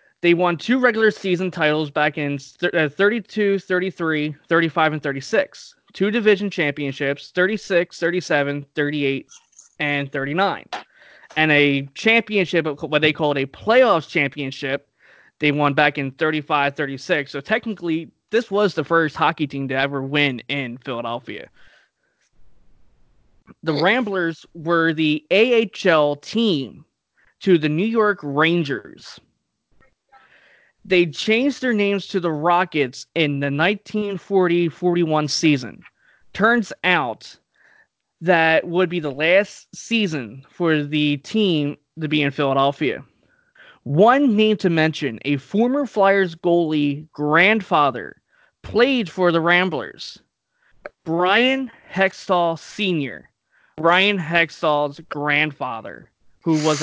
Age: 20-39